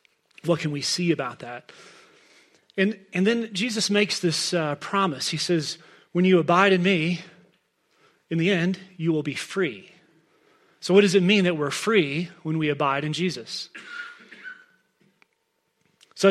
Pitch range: 160-200 Hz